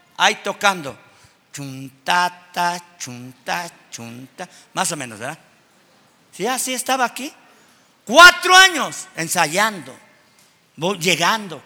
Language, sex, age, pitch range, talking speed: Spanish, male, 50-69, 175-260 Hz, 95 wpm